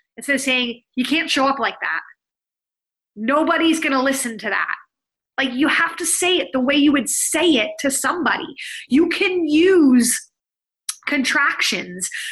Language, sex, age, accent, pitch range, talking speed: English, female, 30-49, American, 260-345 Hz, 160 wpm